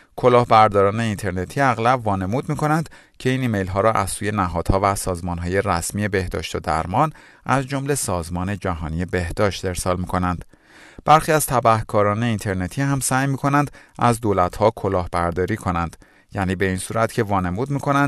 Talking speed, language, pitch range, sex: 165 wpm, Persian, 95-130 Hz, male